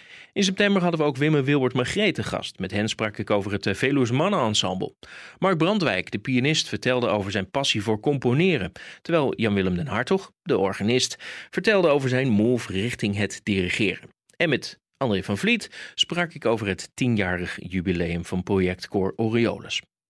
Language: Dutch